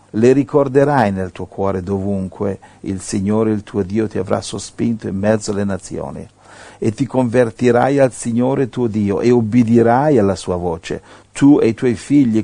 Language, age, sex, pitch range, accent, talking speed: Italian, 50-69, male, 95-120 Hz, native, 170 wpm